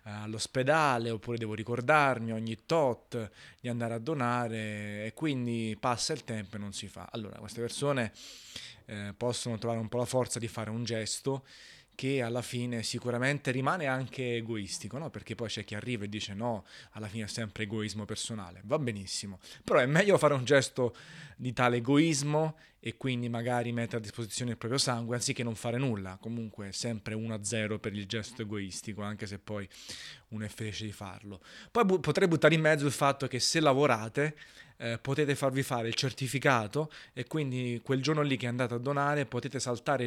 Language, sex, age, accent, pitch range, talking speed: Italian, male, 20-39, native, 110-130 Hz, 180 wpm